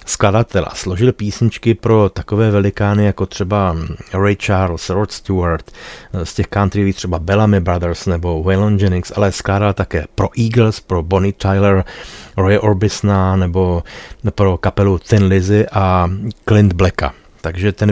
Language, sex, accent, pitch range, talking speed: Czech, male, native, 95-105 Hz, 135 wpm